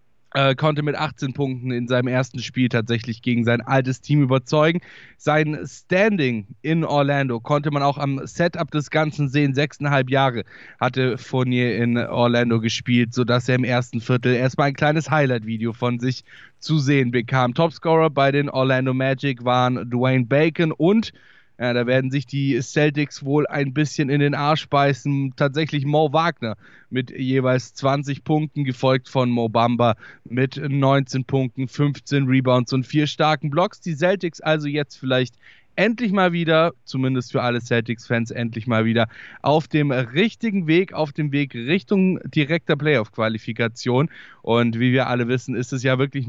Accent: German